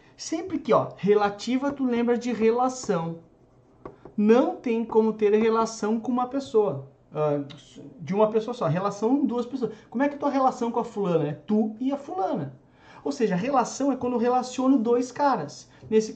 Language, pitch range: Portuguese, 170-240 Hz